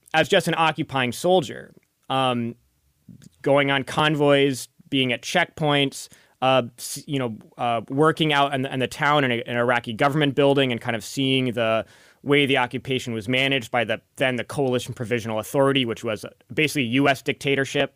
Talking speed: 165 wpm